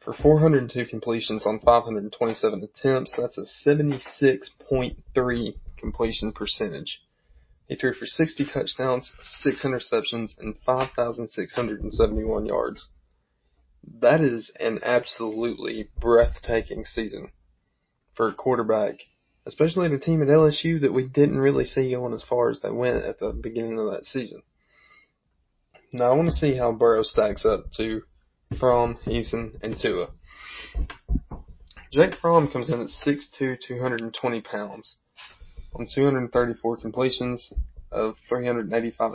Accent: American